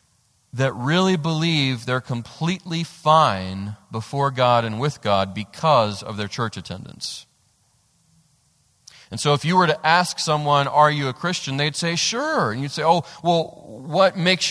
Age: 30-49